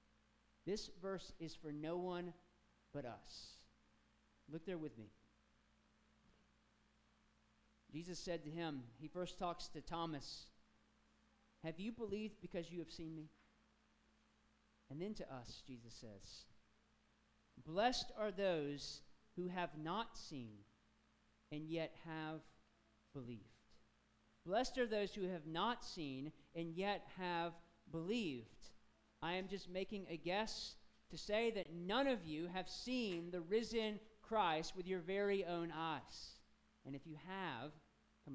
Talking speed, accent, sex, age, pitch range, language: 130 wpm, American, male, 40-59, 145-220 Hz, English